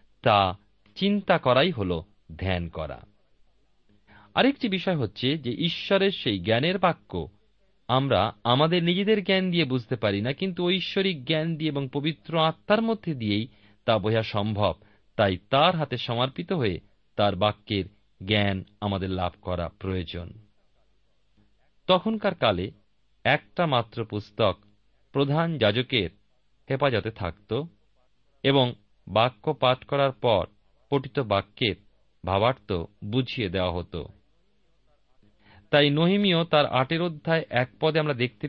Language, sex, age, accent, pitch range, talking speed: Bengali, male, 40-59, native, 105-145 Hz, 115 wpm